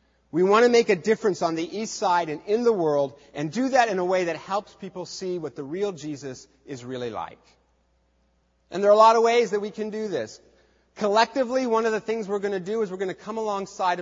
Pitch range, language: 160-215 Hz, English